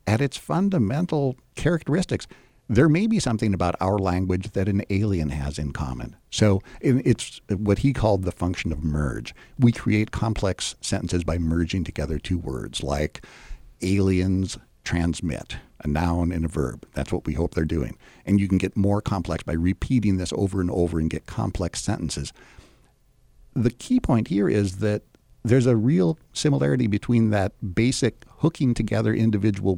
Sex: male